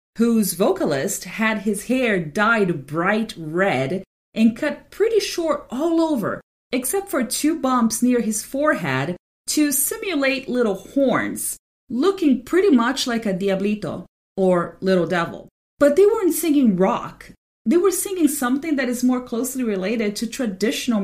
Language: English